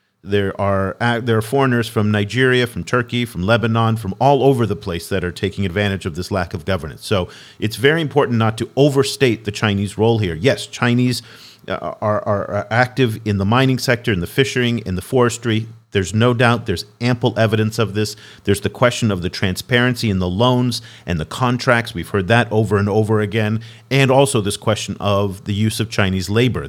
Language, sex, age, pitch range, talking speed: English, male, 40-59, 105-130 Hz, 200 wpm